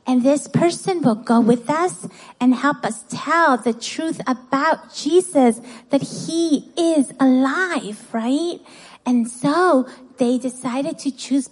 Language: English